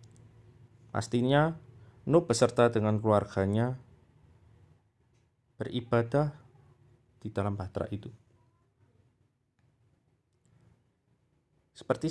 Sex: male